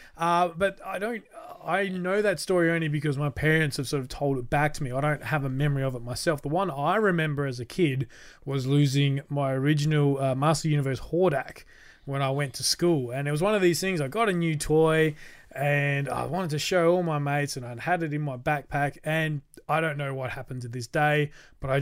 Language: English